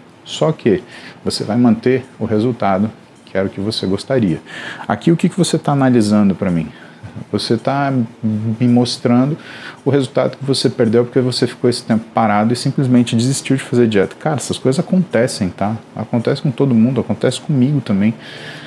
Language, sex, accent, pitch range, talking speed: Portuguese, male, Brazilian, 95-130 Hz, 175 wpm